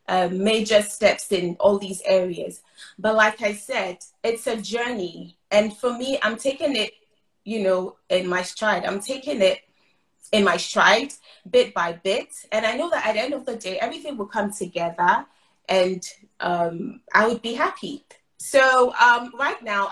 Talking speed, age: 175 wpm, 30-49